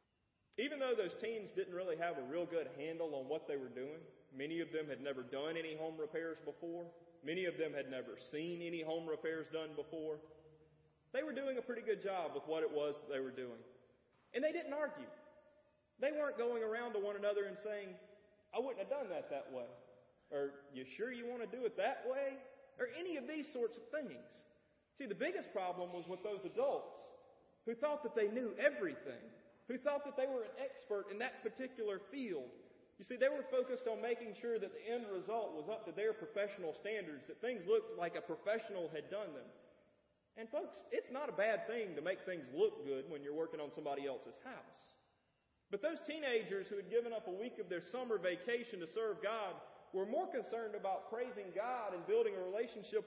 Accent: American